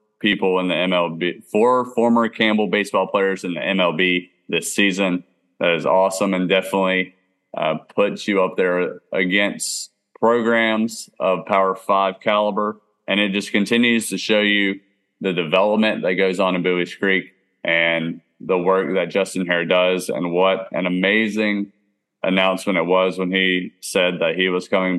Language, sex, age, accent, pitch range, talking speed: English, male, 30-49, American, 90-100 Hz, 160 wpm